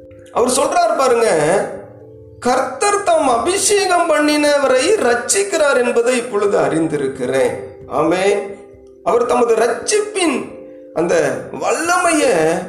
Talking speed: 55 wpm